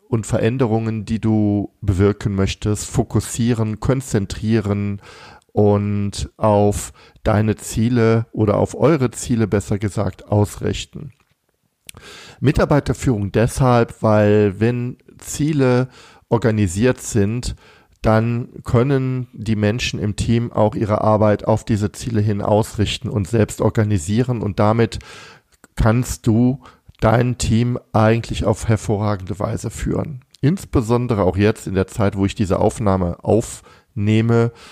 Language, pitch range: German, 100-120 Hz